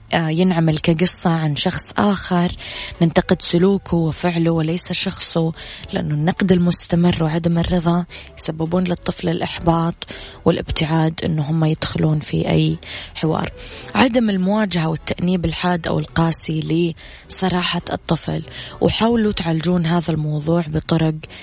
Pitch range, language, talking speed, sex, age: 155-185 Hz, Arabic, 105 wpm, female, 20-39